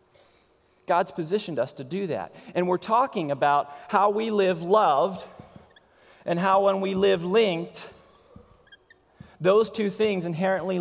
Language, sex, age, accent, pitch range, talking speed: English, male, 30-49, American, 145-190 Hz, 135 wpm